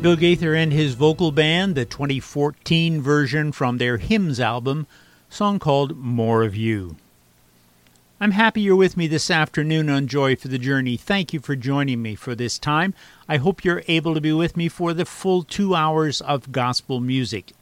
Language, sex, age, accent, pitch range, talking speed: English, male, 50-69, American, 125-165 Hz, 185 wpm